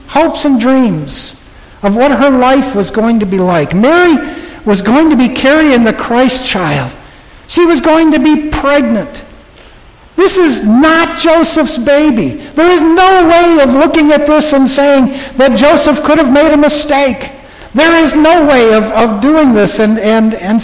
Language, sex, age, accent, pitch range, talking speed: English, male, 60-79, American, 225-295 Hz, 175 wpm